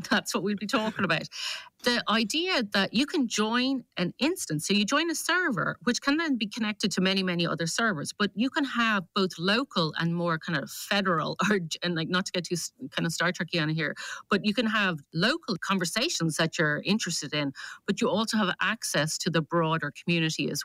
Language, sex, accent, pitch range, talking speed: English, female, Irish, 170-235 Hz, 210 wpm